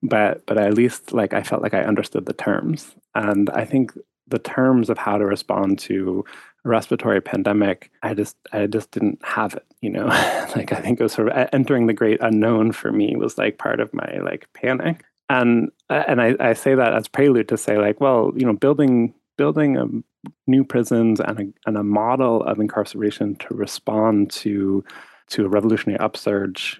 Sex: male